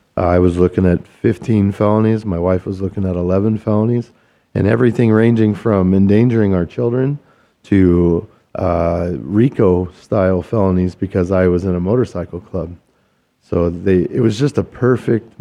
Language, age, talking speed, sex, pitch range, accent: English, 40-59, 150 wpm, male, 90-110 Hz, American